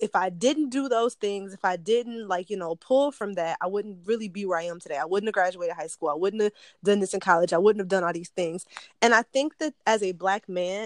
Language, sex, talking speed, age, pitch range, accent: English, female, 280 wpm, 20-39, 185-230 Hz, American